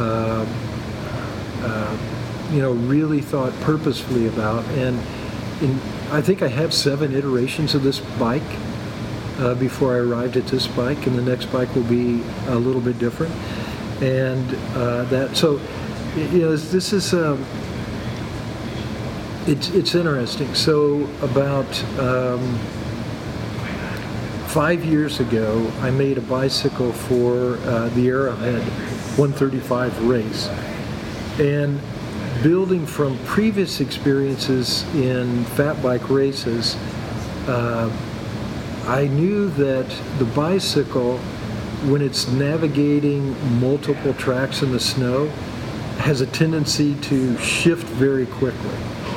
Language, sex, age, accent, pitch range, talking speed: English, male, 50-69, American, 115-140 Hz, 115 wpm